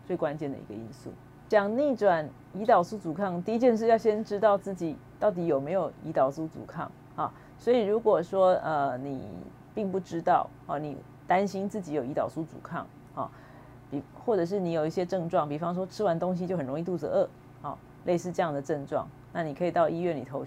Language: Chinese